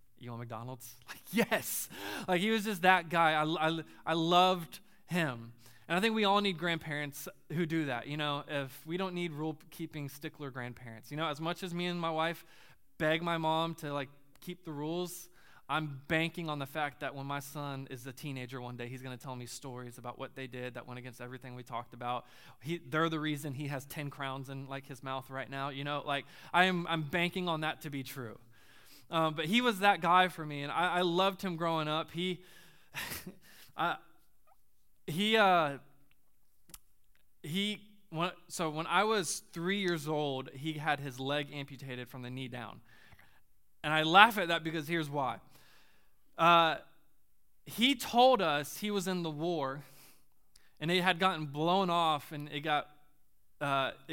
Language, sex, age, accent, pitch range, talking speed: English, male, 20-39, American, 135-175 Hz, 190 wpm